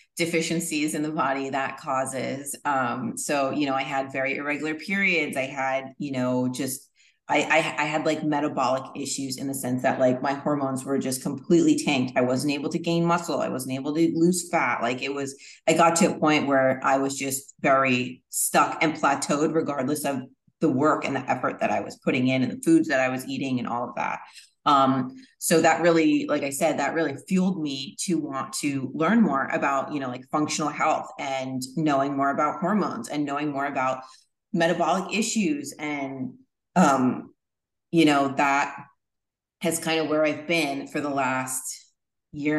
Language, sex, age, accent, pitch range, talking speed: English, female, 30-49, American, 135-160 Hz, 195 wpm